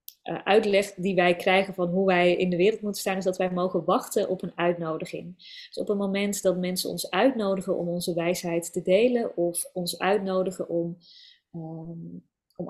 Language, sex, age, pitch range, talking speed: Dutch, female, 20-39, 180-210 Hz, 185 wpm